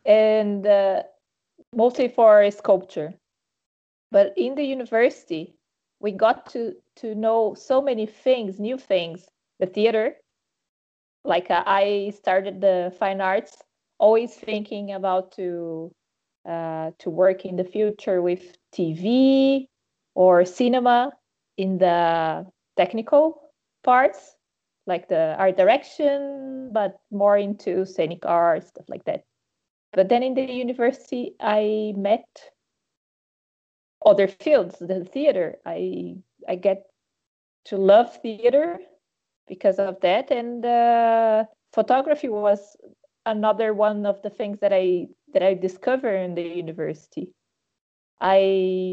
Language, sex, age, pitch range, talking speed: English, female, 20-39, 185-240 Hz, 120 wpm